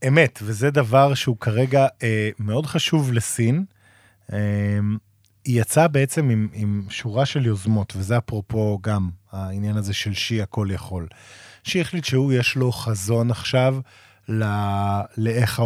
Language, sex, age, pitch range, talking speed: Hebrew, male, 20-39, 110-145 Hz, 135 wpm